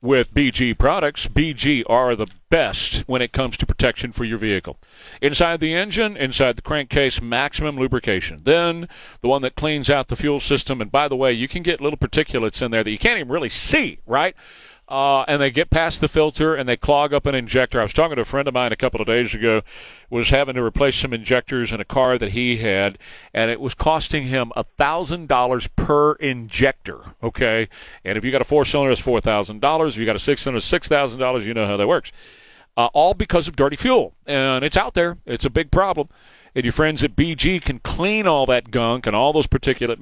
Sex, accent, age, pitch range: male, American, 40-59, 115-150 Hz